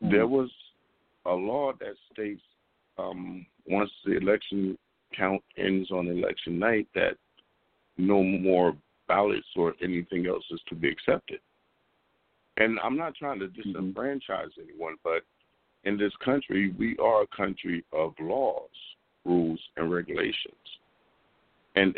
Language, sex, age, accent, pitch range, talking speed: English, male, 50-69, American, 90-110 Hz, 130 wpm